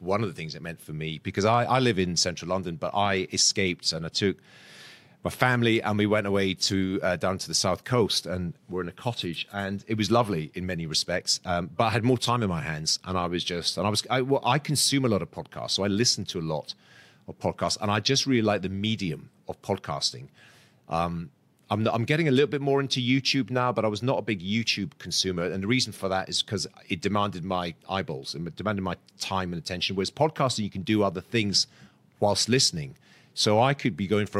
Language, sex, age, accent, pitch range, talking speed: English, male, 30-49, British, 95-120 Hz, 240 wpm